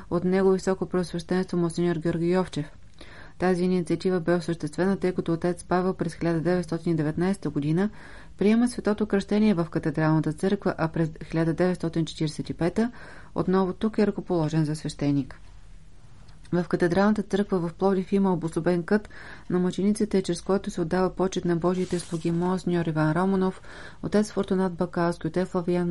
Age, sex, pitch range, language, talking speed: 30-49, female, 165-190 Hz, Bulgarian, 135 wpm